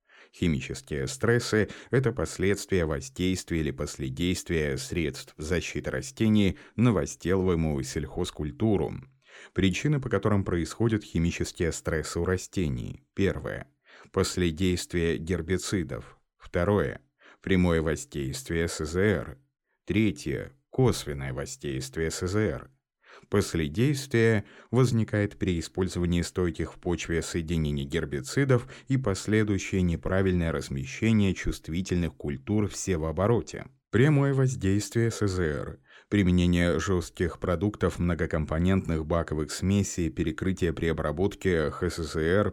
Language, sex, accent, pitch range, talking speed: Russian, male, native, 80-100 Hz, 85 wpm